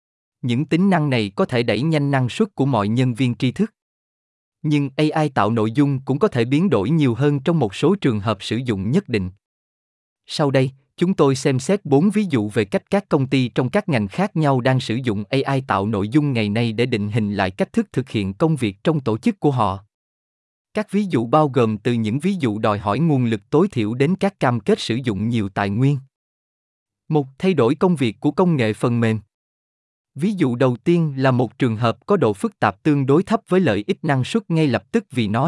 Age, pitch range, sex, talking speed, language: 20-39, 110-155 Hz, male, 235 wpm, Vietnamese